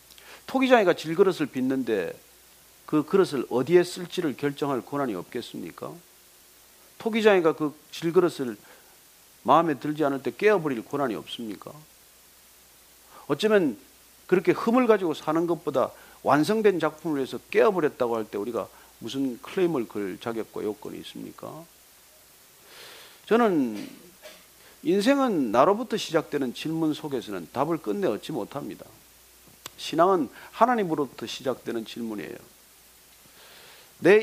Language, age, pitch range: Korean, 40-59, 130-200 Hz